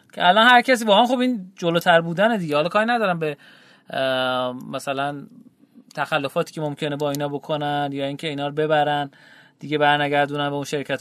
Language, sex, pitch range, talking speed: Persian, male, 145-240 Hz, 175 wpm